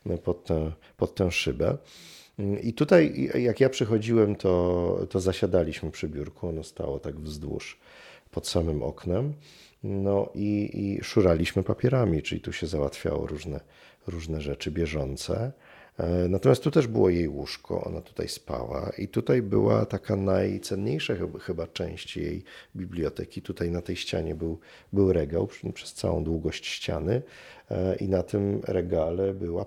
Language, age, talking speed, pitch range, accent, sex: Polish, 40-59, 140 wpm, 85-105 Hz, native, male